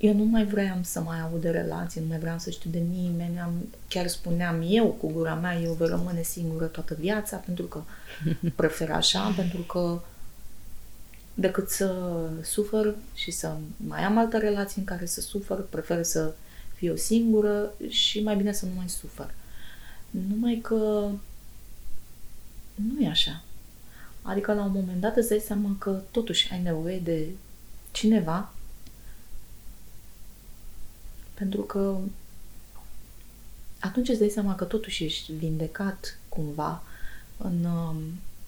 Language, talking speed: Romanian, 140 wpm